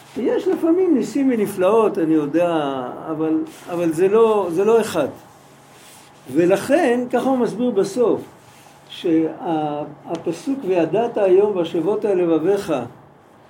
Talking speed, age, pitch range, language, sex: 100 wpm, 60-79, 175-260 Hz, Hebrew, male